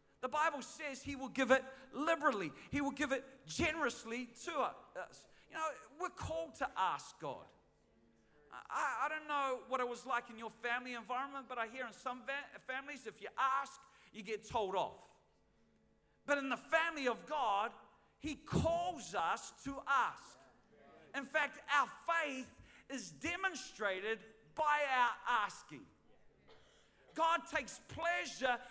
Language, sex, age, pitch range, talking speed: English, male, 40-59, 250-310 Hz, 145 wpm